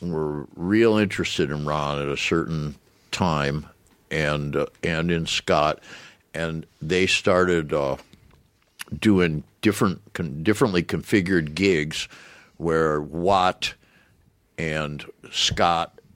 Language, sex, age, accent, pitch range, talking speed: English, male, 60-79, American, 75-90 Hz, 105 wpm